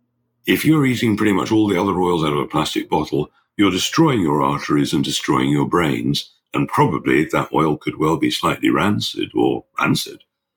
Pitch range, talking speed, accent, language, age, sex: 80-110 Hz, 185 wpm, British, English, 60-79, male